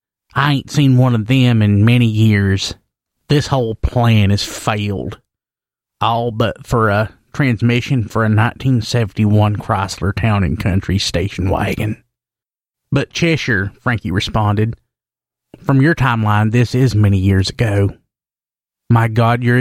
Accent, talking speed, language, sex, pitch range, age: American, 130 wpm, English, male, 105-130 Hz, 30-49